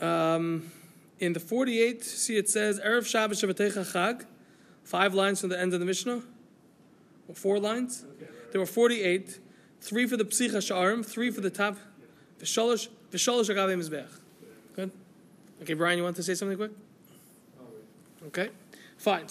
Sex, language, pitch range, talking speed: male, English, 190-245 Hz, 125 wpm